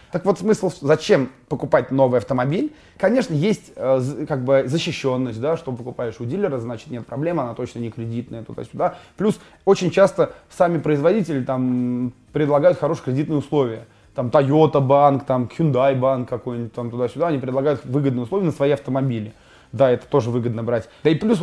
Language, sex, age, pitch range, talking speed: Russian, male, 20-39, 125-165 Hz, 165 wpm